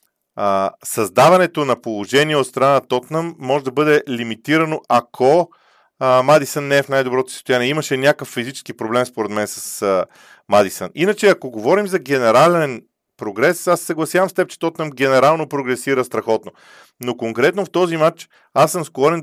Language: Bulgarian